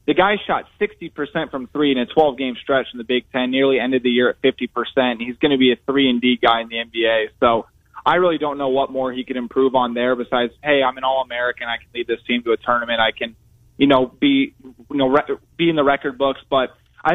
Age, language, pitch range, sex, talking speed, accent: 20-39, English, 125-145 Hz, male, 255 wpm, American